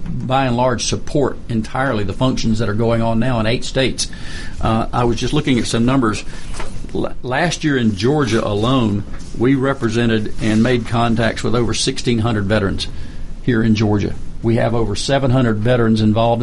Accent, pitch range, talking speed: American, 110-125 Hz, 170 wpm